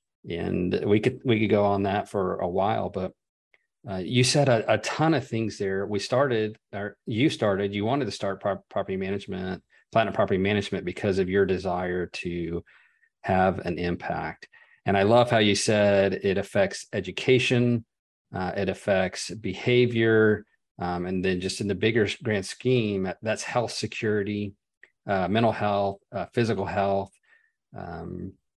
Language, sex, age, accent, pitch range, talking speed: English, male, 40-59, American, 95-110 Hz, 155 wpm